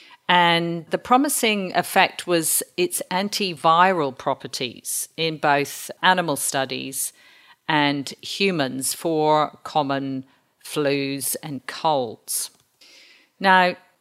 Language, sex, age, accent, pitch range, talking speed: English, female, 50-69, British, 140-185 Hz, 85 wpm